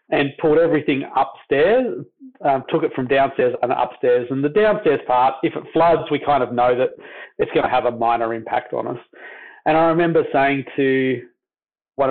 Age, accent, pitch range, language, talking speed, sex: 40-59, Australian, 135-165 Hz, English, 185 wpm, male